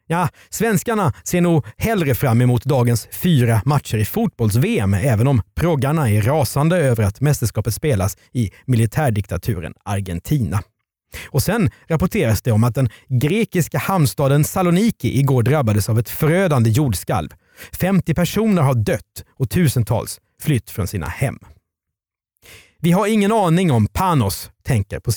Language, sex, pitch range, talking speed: Swedish, male, 110-155 Hz, 140 wpm